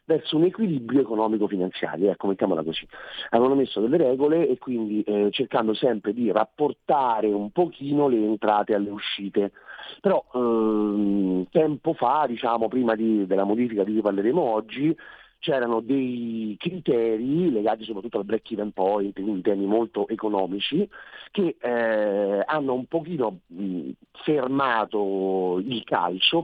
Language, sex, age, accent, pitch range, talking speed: Italian, male, 40-59, native, 105-135 Hz, 125 wpm